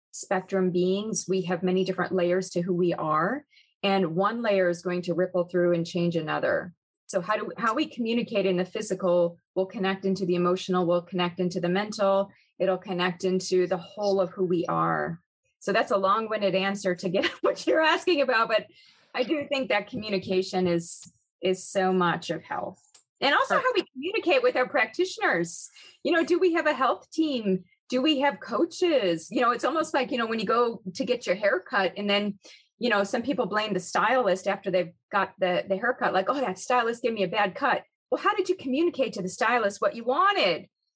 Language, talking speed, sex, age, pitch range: English, 210 wpm, female, 30-49, 180-250 Hz